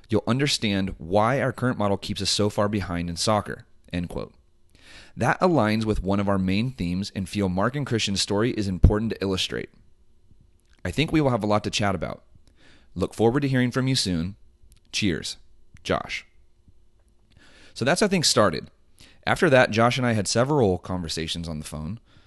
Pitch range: 90-110 Hz